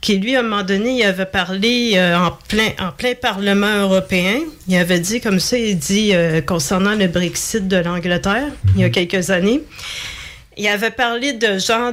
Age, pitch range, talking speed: 40-59, 185-220 Hz, 195 wpm